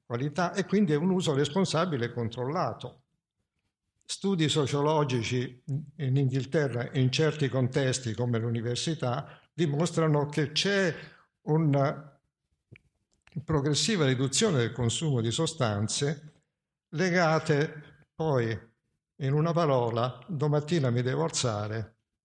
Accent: native